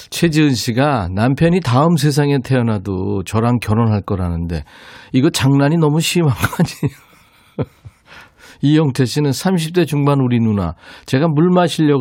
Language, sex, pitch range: Korean, male, 105-150 Hz